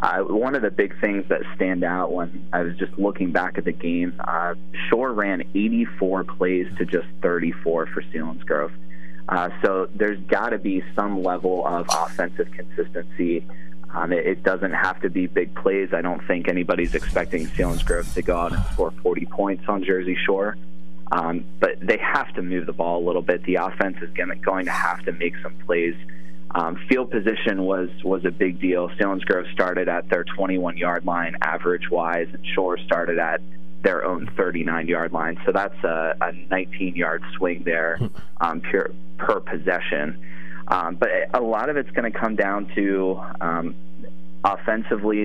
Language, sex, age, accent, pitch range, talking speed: English, male, 20-39, American, 80-95 Hz, 180 wpm